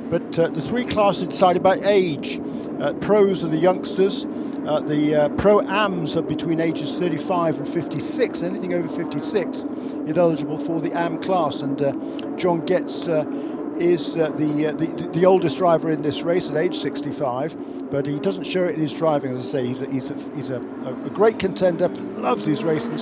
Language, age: English, 50-69